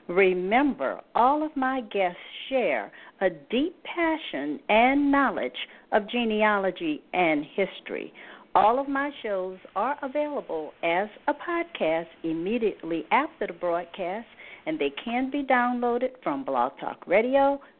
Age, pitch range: 50-69, 195-285 Hz